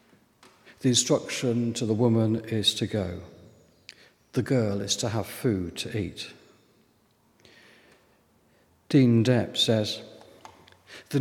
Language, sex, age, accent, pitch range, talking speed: English, male, 50-69, British, 110-140 Hz, 105 wpm